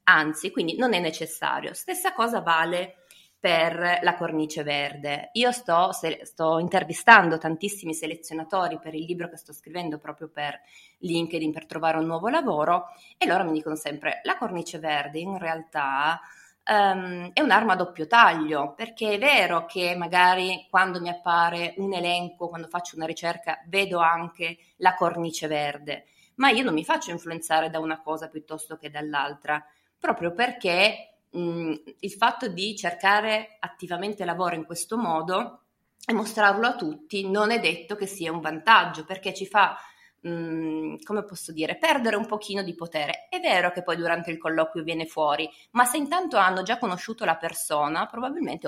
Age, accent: 20-39, native